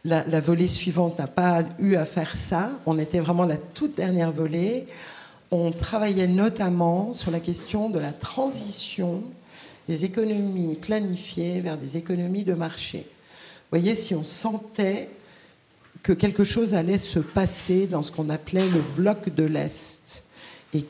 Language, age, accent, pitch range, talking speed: French, 50-69, French, 160-200 Hz, 155 wpm